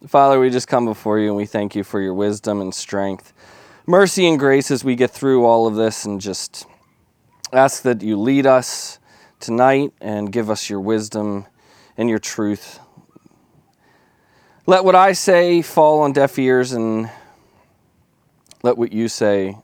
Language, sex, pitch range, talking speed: English, male, 100-135 Hz, 165 wpm